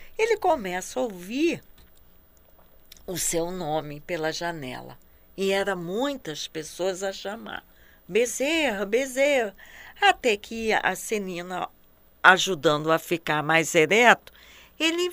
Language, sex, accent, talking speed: Portuguese, female, Brazilian, 105 wpm